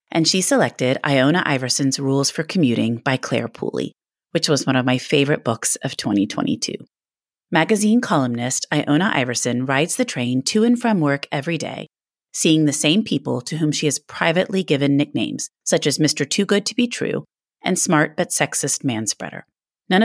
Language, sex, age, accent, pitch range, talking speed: English, female, 30-49, American, 135-180 Hz, 175 wpm